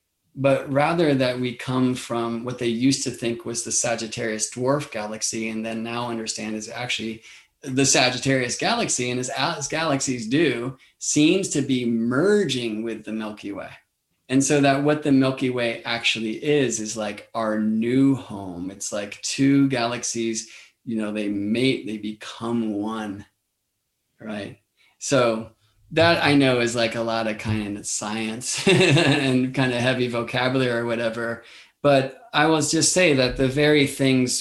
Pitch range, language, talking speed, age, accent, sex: 110-135 Hz, English, 160 wpm, 20-39, American, male